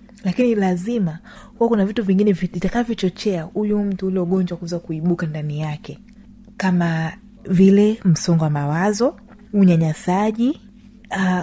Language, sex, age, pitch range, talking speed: Swahili, female, 30-49, 165-210 Hz, 110 wpm